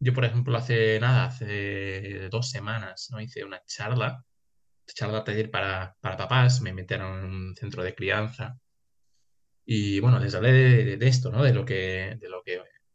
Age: 20-39